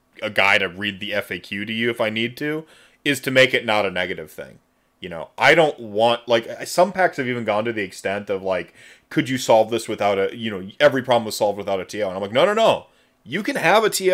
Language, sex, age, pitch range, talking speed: English, male, 30-49, 105-135 Hz, 265 wpm